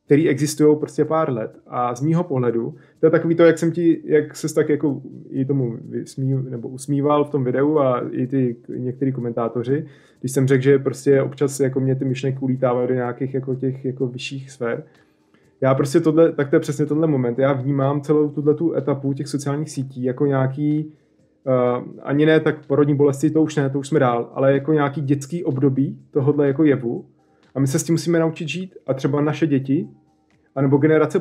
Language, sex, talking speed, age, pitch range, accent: Czech, male, 200 wpm, 20-39, 130-155 Hz, native